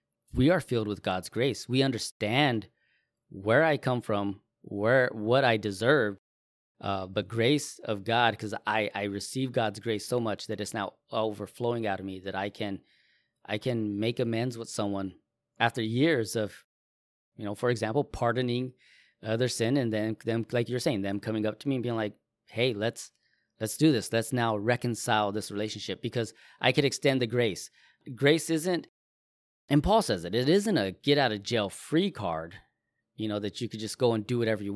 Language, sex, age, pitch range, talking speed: English, male, 20-39, 105-125 Hz, 195 wpm